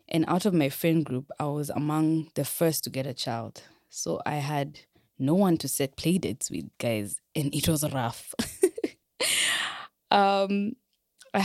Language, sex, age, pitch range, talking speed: English, female, 20-39, 140-165 Hz, 160 wpm